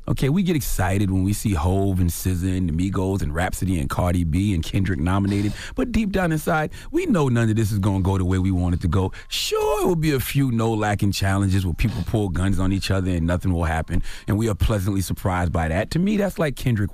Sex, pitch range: male, 95-145 Hz